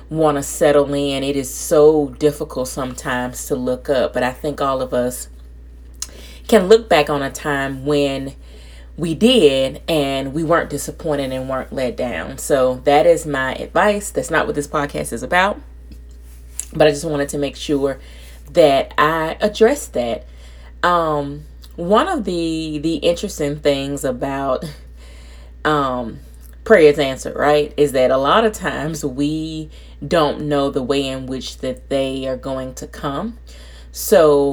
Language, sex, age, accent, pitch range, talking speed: English, female, 30-49, American, 130-155 Hz, 155 wpm